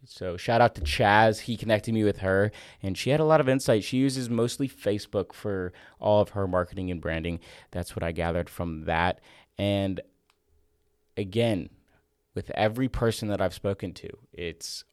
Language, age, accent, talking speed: English, 20-39, American, 175 wpm